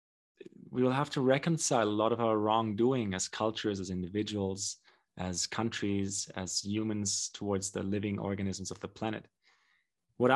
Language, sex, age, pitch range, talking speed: English, male, 20-39, 100-125 Hz, 150 wpm